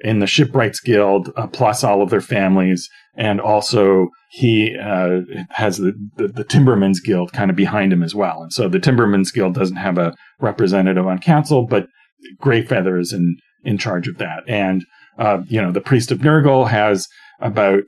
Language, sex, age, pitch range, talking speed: English, male, 40-59, 95-125 Hz, 185 wpm